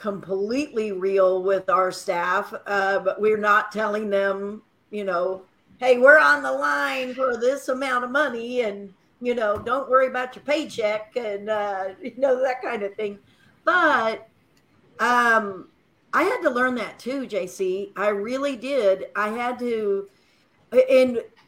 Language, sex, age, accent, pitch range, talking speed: English, female, 50-69, American, 195-240 Hz, 155 wpm